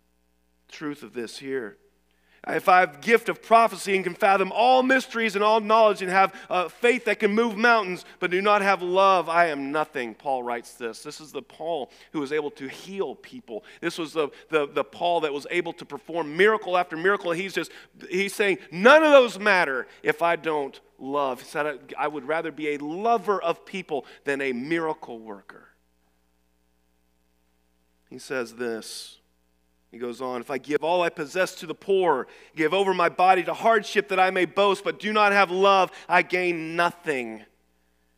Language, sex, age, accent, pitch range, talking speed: English, male, 40-59, American, 115-180 Hz, 190 wpm